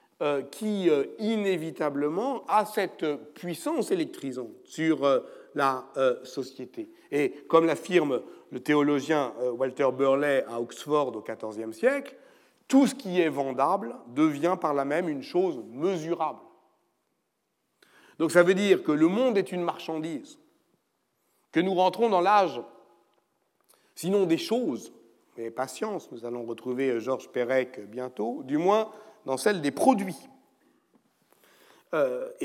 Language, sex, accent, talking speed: French, male, French, 120 wpm